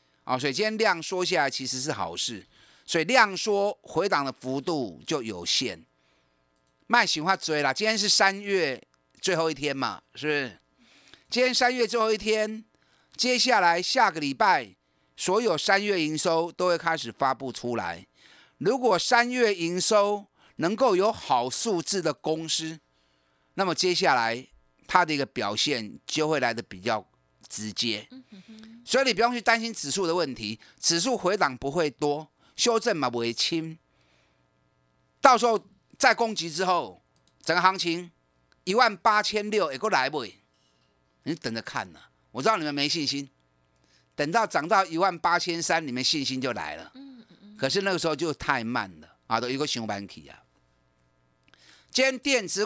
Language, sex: Chinese, male